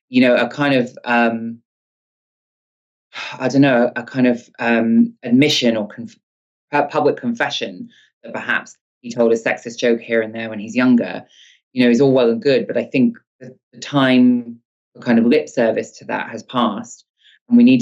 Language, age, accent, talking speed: English, 20-39, British, 185 wpm